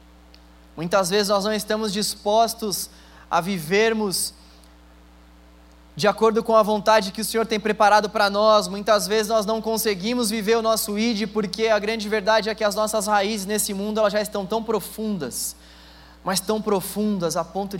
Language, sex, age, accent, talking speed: Portuguese, male, 20-39, Brazilian, 165 wpm